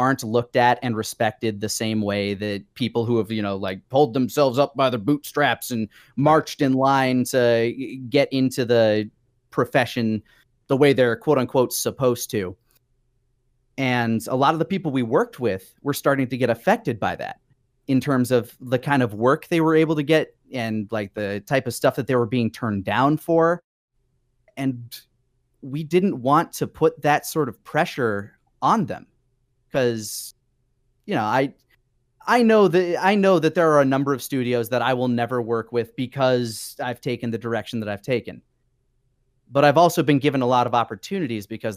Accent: American